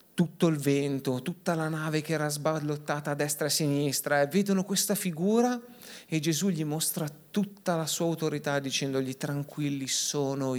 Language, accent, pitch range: Italian, native, 135-160 Hz